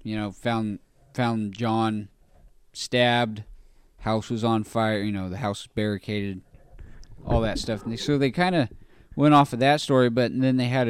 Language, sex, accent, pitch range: English, male, American, 105-135 Hz